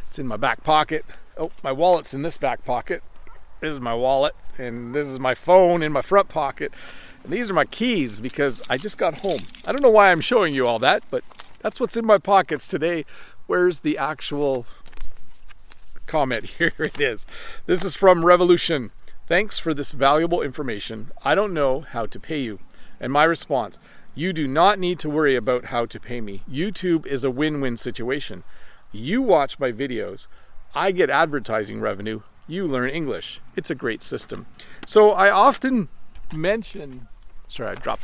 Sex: male